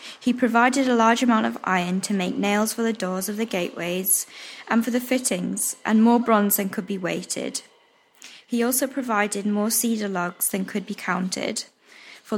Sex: female